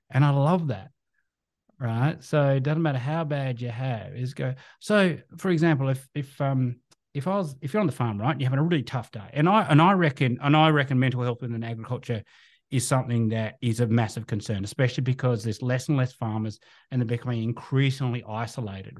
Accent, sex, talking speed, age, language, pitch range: Australian, male, 210 wpm, 30-49, English, 115-150 Hz